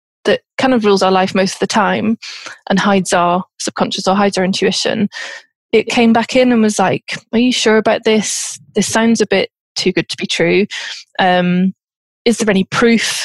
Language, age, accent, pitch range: English, 20-39, British, 195-235 Hz